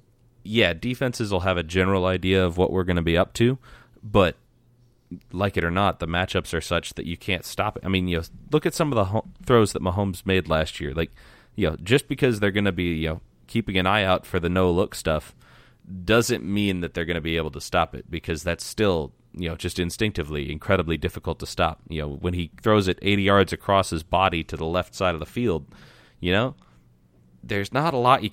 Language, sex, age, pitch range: English, male, 30-49, 80-105 Hz